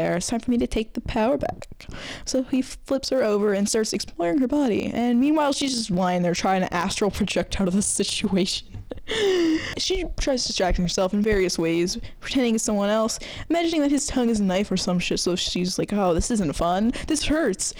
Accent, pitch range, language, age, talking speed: American, 195-265 Hz, English, 10-29, 215 wpm